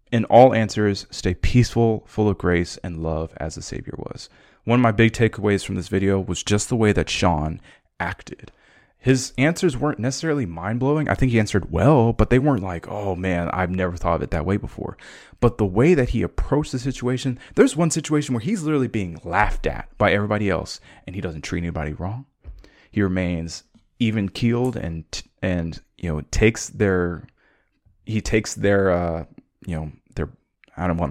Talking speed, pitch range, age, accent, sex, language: 195 wpm, 90-115 Hz, 30-49, American, male, English